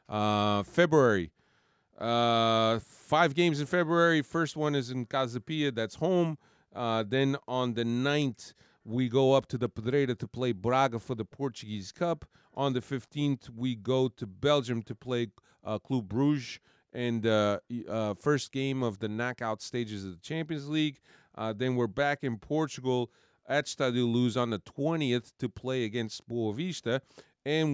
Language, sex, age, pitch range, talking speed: English, male, 40-59, 115-140 Hz, 160 wpm